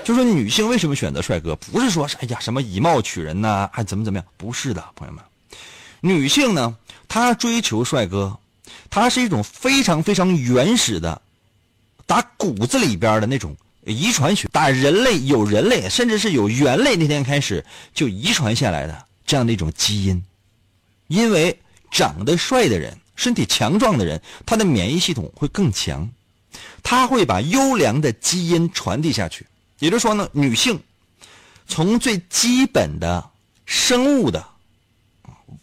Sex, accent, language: male, native, Chinese